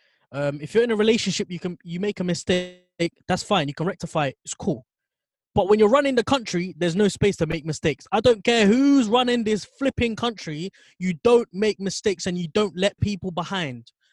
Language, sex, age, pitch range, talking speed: English, male, 20-39, 150-205 Hz, 210 wpm